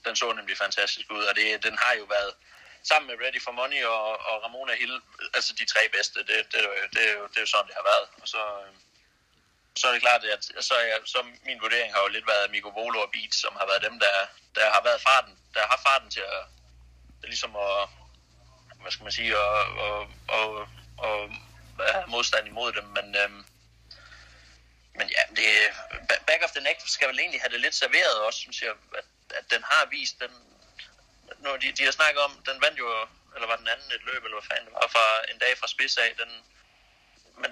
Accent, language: native, Danish